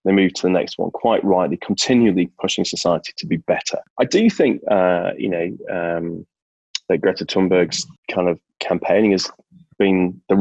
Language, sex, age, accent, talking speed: English, male, 30-49, British, 175 wpm